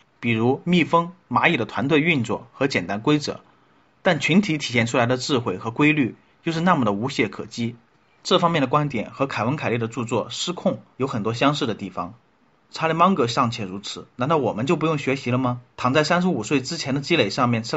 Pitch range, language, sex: 120-160 Hz, Chinese, male